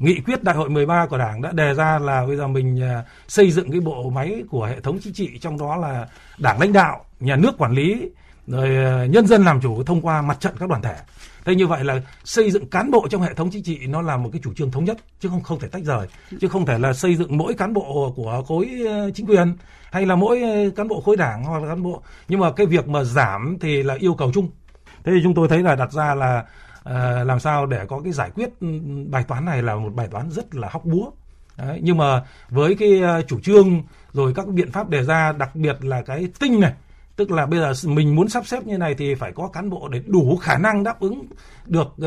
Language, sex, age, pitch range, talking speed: Vietnamese, male, 60-79, 135-185 Hz, 250 wpm